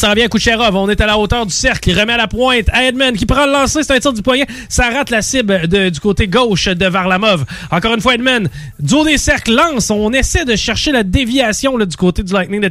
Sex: male